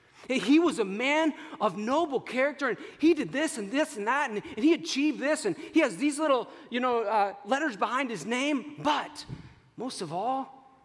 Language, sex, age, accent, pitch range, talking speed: English, male, 40-59, American, 165-255 Hz, 195 wpm